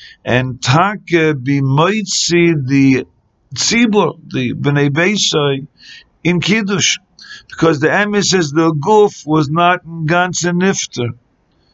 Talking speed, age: 105 wpm, 50-69